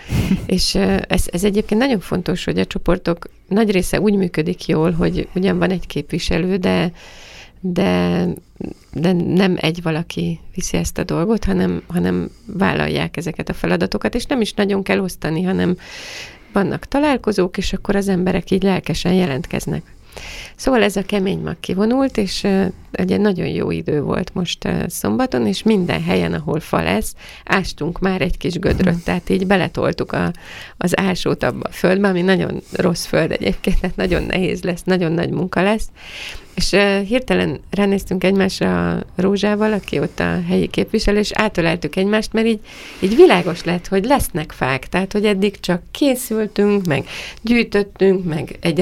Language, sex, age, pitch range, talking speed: Hungarian, female, 30-49, 170-200 Hz, 160 wpm